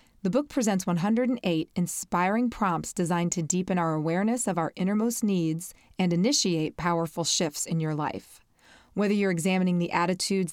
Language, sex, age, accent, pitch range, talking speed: English, female, 30-49, American, 170-225 Hz, 155 wpm